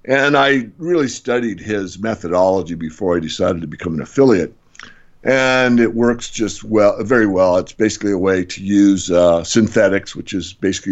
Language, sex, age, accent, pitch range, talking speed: English, male, 50-69, American, 90-110 Hz, 170 wpm